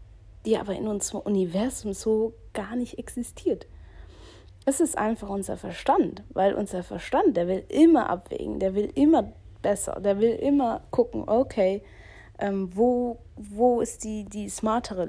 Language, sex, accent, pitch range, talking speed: German, female, German, 200-255 Hz, 145 wpm